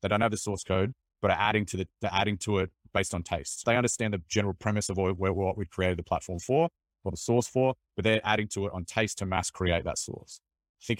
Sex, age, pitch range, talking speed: male, 20-39, 85-105 Hz, 265 wpm